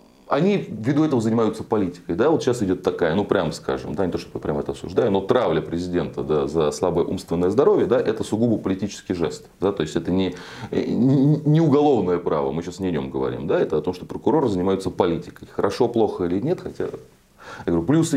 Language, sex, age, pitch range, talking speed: Russian, male, 30-49, 90-145 Hz, 210 wpm